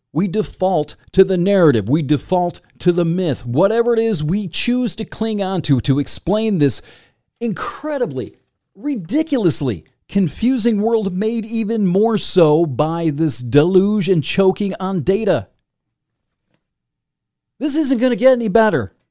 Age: 40-59